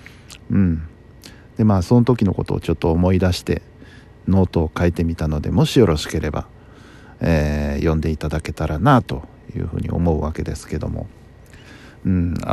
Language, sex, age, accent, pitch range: Japanese, male, 50-69, native, 90-120 Hz